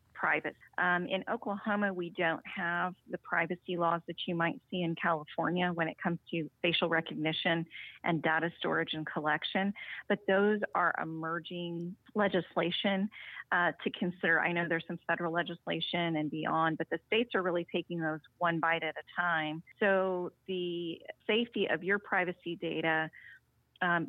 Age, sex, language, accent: 30-49, female, English, American